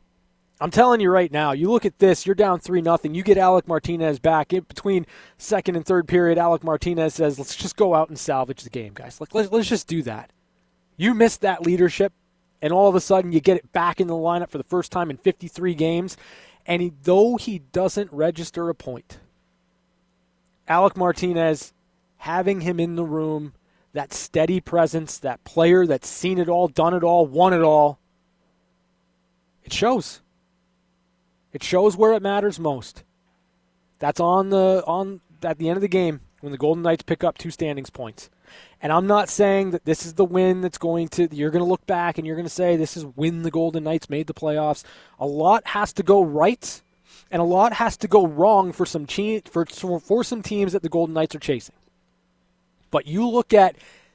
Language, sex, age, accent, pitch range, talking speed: English, male, 20-39, American, 155-190 Hz, 200 wpm